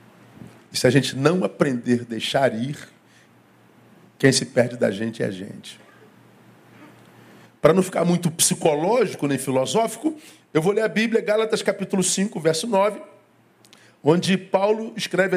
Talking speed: 145 wpm